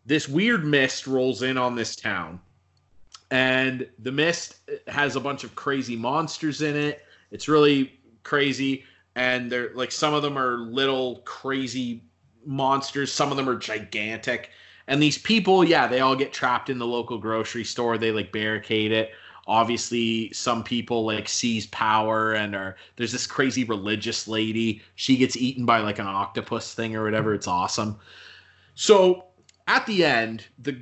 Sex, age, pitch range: male, 30-49, 115-140 Hz